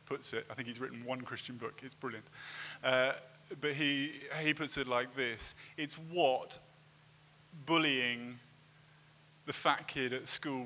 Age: 20-39